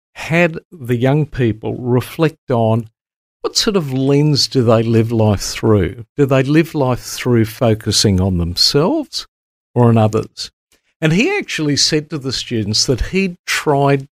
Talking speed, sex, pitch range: 155 wpm, male, 110-145 Hz